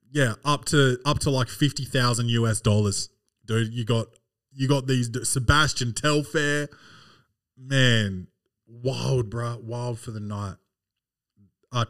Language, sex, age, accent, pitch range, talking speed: English, male, 20-39, Australian, 115-140 Hz, 125 wpm